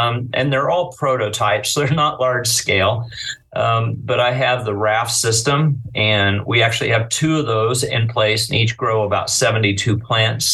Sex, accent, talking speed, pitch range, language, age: male, American, 180 wpm, 110-130 Hz, English, 40-59